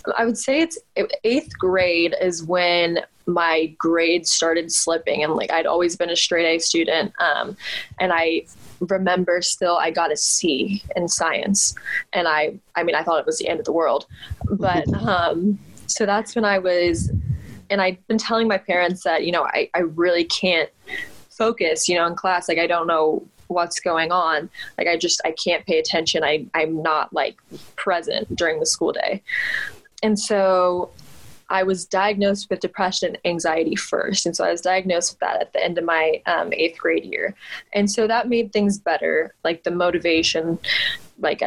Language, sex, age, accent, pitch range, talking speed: English, female, 20-39, American, 165-195 Hz, 185 wpm